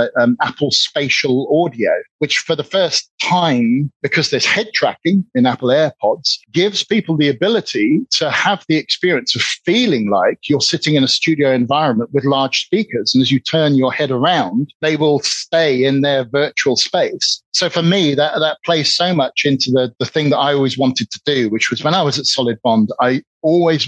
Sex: male